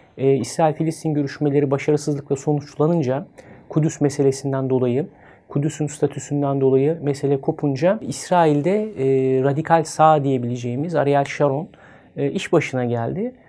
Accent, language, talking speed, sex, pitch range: native, Turkish, 105 wpm, male, 140-165 Hz